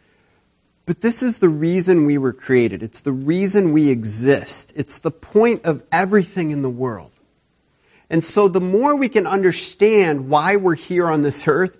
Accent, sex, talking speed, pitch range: American, male, 175 wpm, 125-180 Hz